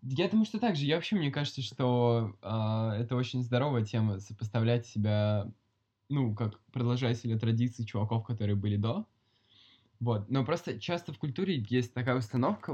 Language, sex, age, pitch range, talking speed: Russian, male, 10-29, 110-135 Hz, 165 wpm